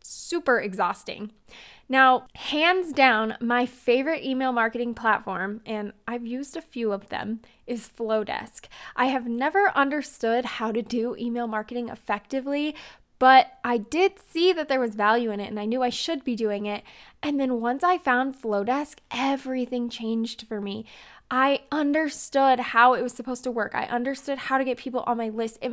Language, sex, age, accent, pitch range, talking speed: English, female, 10-29, American, 225-270 Hz, 175 wpm